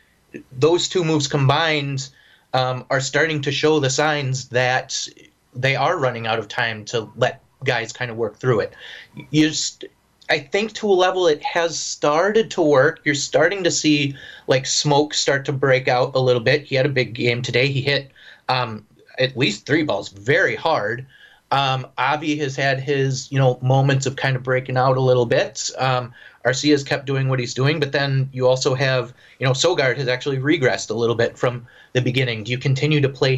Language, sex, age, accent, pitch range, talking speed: English, male, 30-49, American, 125-145 Hz, 200 wpm